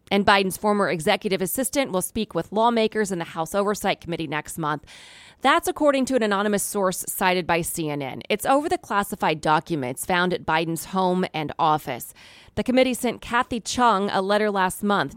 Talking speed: 180 wpm